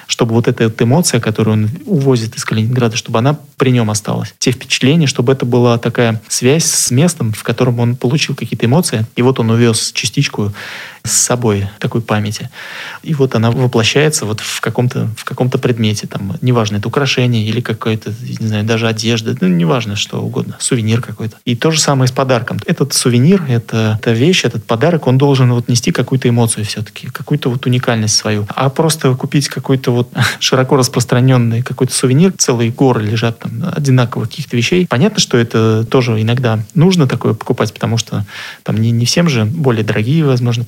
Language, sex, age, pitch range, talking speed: Russian, male, 20-39, 115-140 Hz, 180 wpm